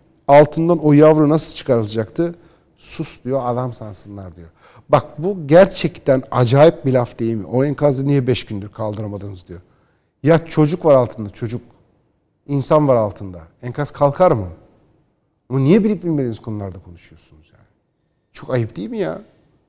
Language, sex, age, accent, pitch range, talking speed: Turkish, male, 60-79, native, 110-150 Hz, 145 wpm